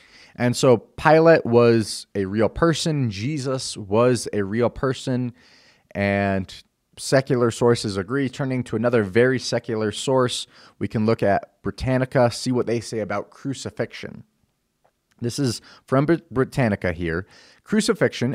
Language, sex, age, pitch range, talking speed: English, male, 30-49, 100-130 Hz, 130 wpm